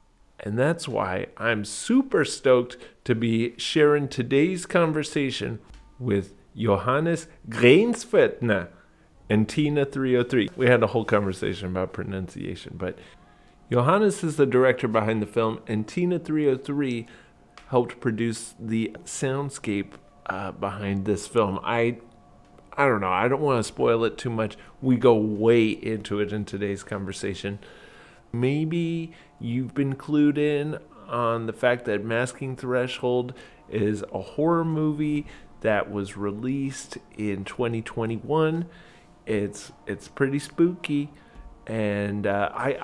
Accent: American